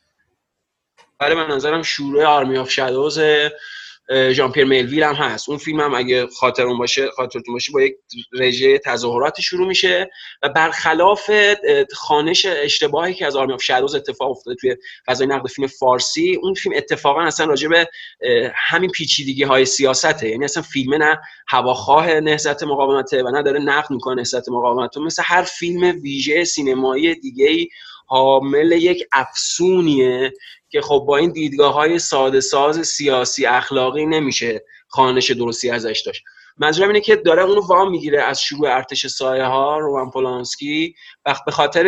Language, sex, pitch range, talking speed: English, male, 130-180 Hz, 150 wpm